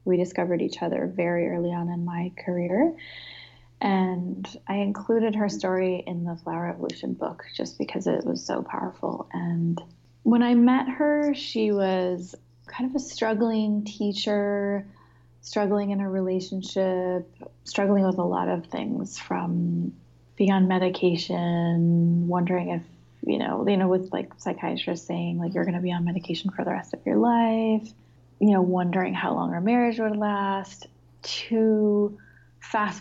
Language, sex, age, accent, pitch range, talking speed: English, female, 20-39, American, 170-205 Hz, 155 wpm